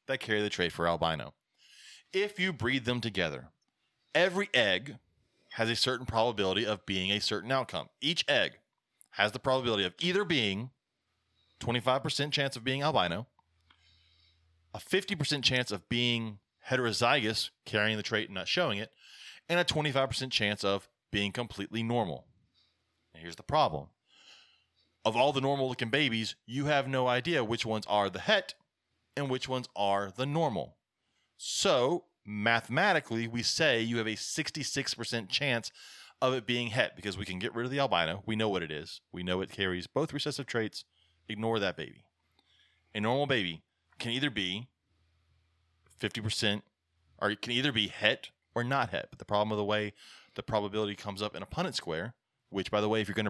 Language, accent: English, American